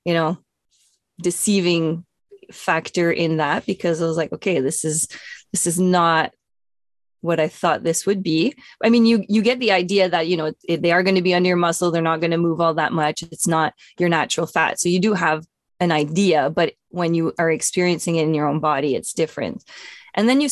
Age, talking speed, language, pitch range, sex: 20-39, 215 wpm, English, 165-200 Hz, female